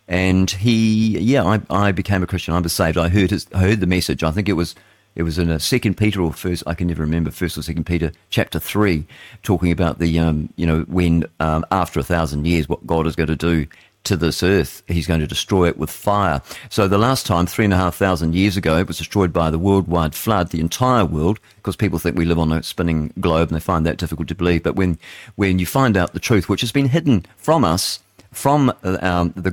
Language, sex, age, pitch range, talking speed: English, male, 40-59, 85-105 Hz, 250 wpm